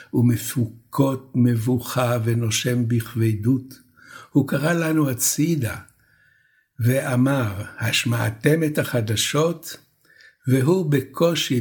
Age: 60-79